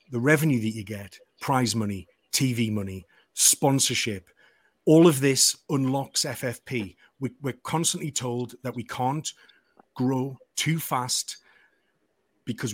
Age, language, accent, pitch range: 30-49, English, British, 115-135 Hz